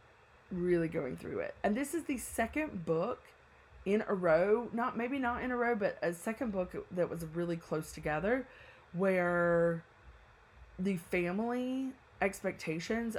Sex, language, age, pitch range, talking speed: female, English, 20-39, 165-205 Hz, 145 wpm